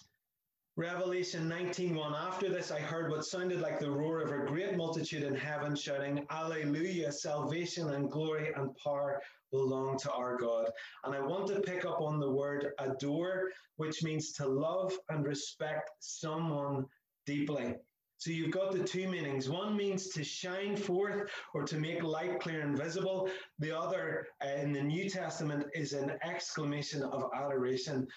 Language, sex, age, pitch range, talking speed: English, male, 30-49, 135-165 Hz, 165 wpm